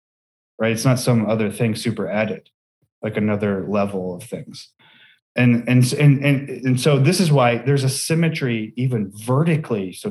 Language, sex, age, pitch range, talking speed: English, male, 30-49, 105-140 Hz, 165 wpm